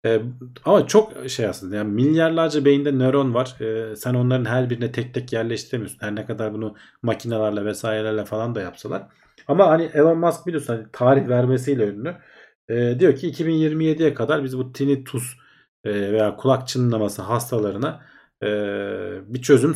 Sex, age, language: male, 40-59, Turkish